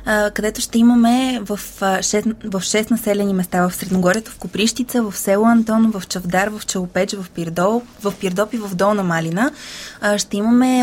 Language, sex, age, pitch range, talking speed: Bulgarian, female, 20-39, 190-230 Hz, 155 wpm